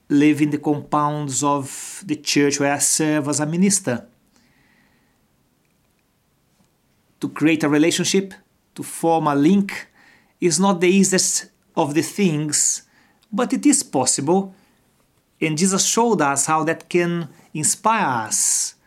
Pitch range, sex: 140-180 Hz, male